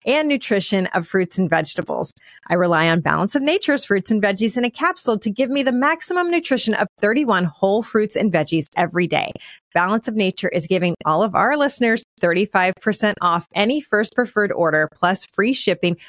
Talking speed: 185 wpm